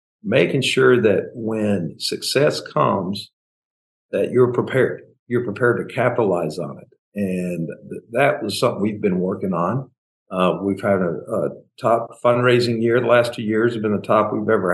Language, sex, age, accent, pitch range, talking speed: English, male, 50-69, American, 100-120 Hz, 170 wpm